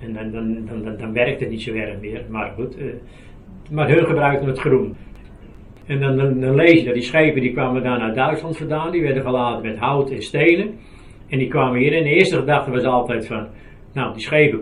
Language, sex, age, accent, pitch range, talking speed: Dutch, male, 60-79, Dutch, 115-135 Hz, 225 wpm